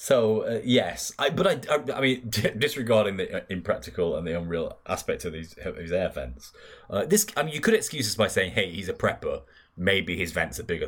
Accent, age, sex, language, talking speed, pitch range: British, 20-39, male, English, 230 wpm, 90-120 Hz